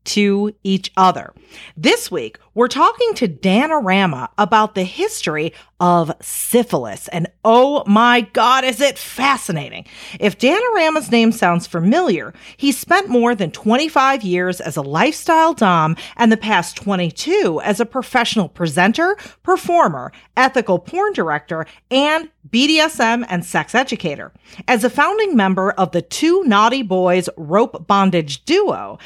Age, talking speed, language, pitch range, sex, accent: 40-59, 135 wpm, English, 185-285 Hz, female, American